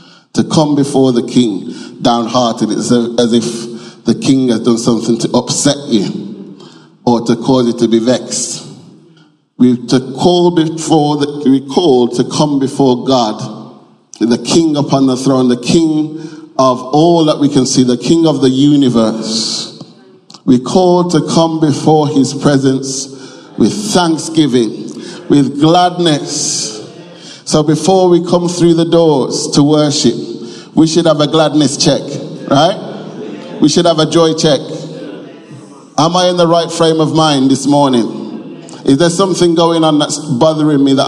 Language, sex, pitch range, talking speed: English, male, 125-160 Hz, 145 wpm